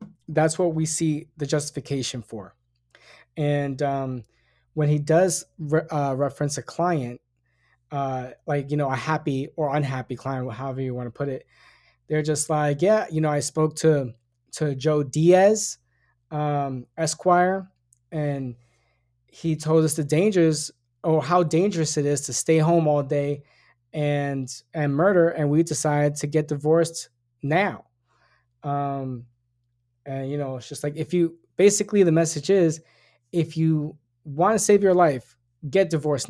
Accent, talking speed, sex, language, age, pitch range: American, 155 wpm, male, English, 20-39, 125-160 Hz